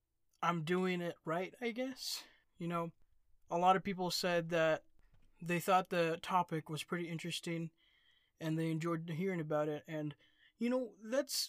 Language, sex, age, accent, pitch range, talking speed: English, male, 20-39, American, 160-195 Hz, 160 wpm